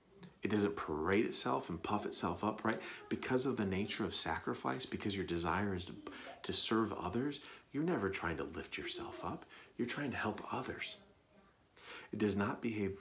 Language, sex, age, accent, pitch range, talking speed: English, male, 40-59, American, 90-110 Hz, 180 wpm